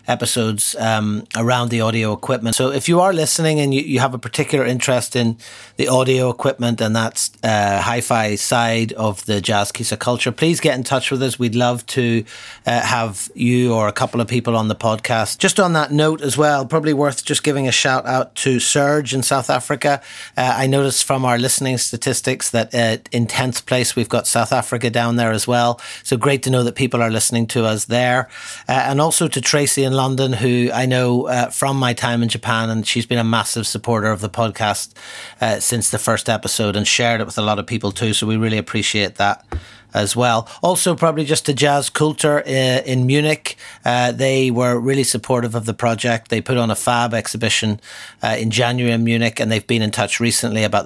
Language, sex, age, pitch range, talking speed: English, male, 30-49, 115-130 Hz, 215 wpm